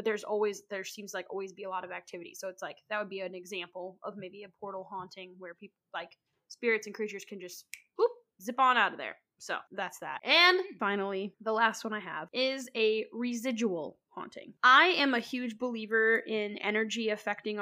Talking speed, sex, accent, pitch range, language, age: 205 wpm, female, American, 200-235 Hz, English, 10-29